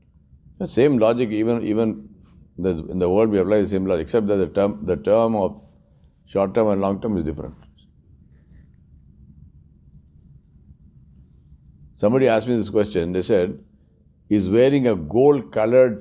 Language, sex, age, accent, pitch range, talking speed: English, male, 60-79, Indian, 70-120 Hz, 145 wpm